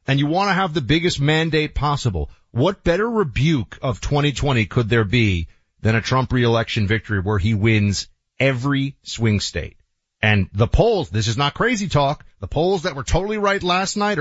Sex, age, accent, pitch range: male, 30-49, American, 110-155 Hz